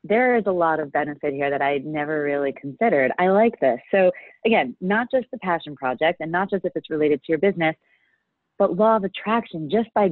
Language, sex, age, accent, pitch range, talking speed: English, female, 30-49, American, 155-230 Hz, 220 wpm